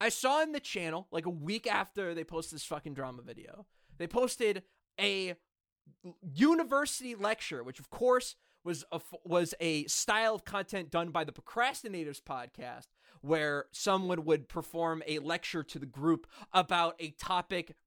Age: 20-39